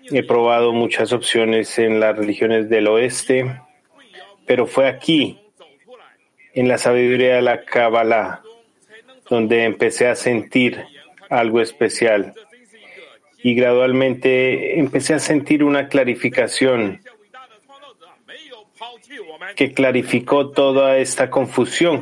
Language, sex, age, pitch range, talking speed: Spanish, male, 30-49, 120-135 Hz, 100 wpm